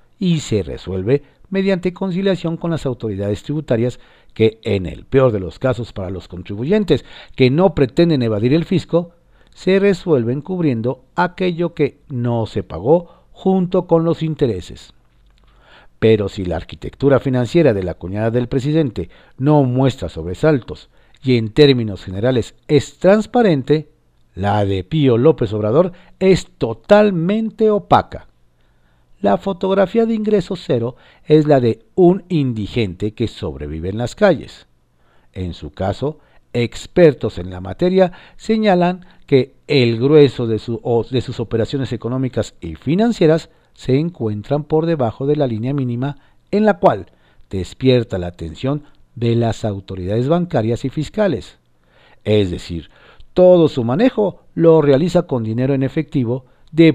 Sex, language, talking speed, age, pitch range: male, Spanish, 135 wpm, 50-69, 105-165 Hz